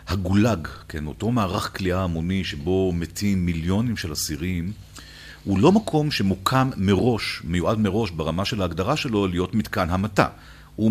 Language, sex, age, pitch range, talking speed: Hebrew, male, 40-59, 85-105 Hz, 145 wpm